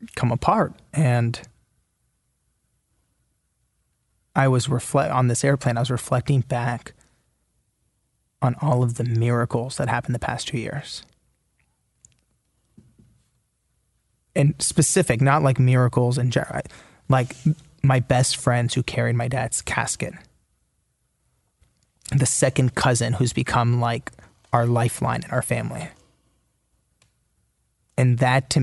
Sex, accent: male, American